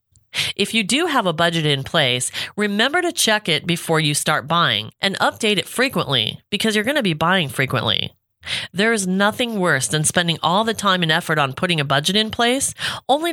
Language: English